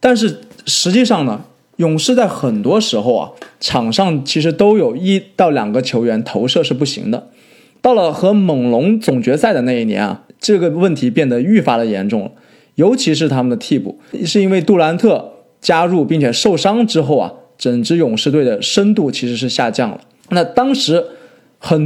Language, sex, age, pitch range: Chinese, male, 20-39, 140-220 Hz